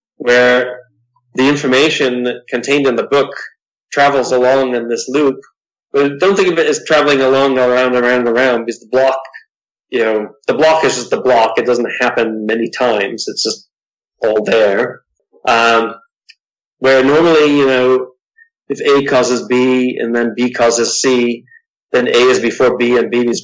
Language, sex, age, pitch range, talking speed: English, male, 30-49, 120-160 Hz, 165 wpm